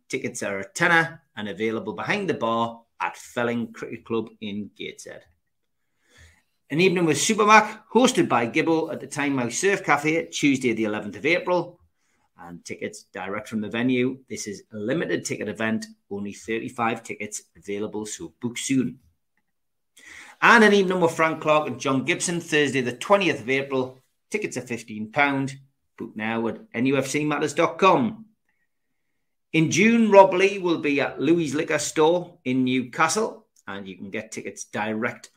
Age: 30-49